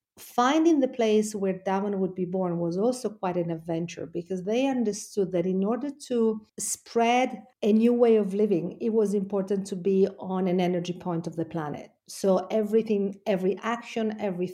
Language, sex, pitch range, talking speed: English, female, 175-215 Hz, 180 wpm